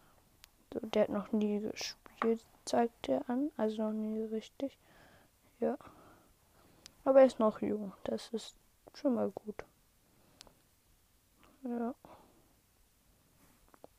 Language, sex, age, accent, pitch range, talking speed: German, female, 20-39, German, 215-265 Hz, 105 wpm